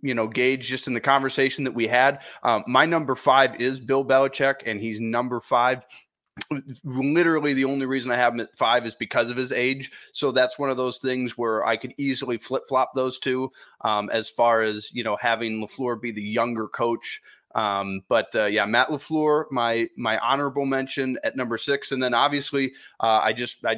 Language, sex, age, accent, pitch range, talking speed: English, male, 30-49, American, 115-135 Hz, 205 wpm